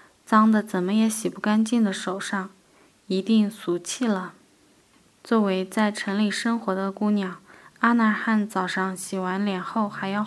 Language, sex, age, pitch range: Chinese, female, 10-29, 190-225 Hz